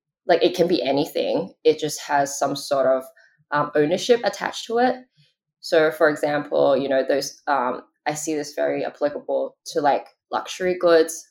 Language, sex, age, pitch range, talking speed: English, female, 10-29, 145-185 Hz, 165 wpm